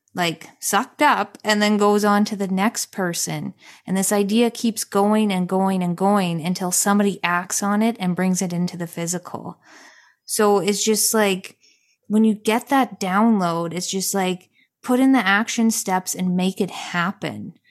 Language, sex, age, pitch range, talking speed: English, female, 20-39, 175-210 Hz, 175 wpm